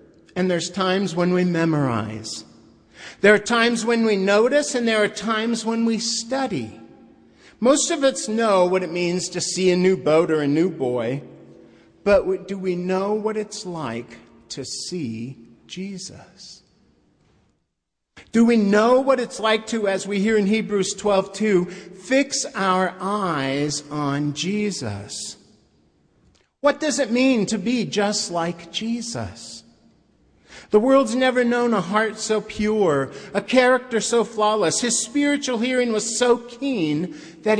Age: 50-69